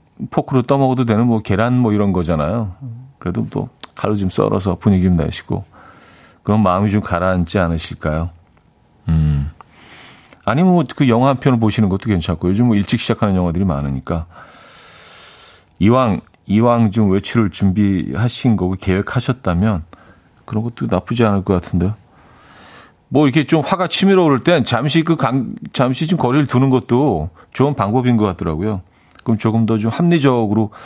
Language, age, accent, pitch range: Korean, 40-59, native, 95-130 Hz